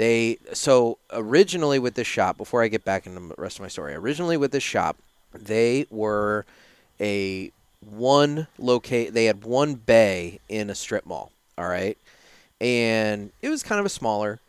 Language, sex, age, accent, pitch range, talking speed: English, male, 30-49, American, 105-125 Hz, 175 wpm